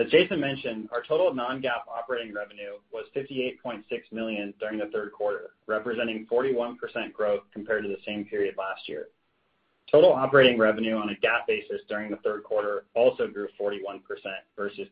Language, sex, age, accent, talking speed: English, male, 30-49, American, 155 wpm